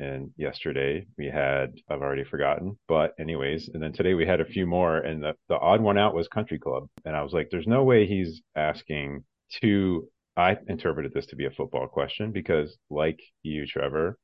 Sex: male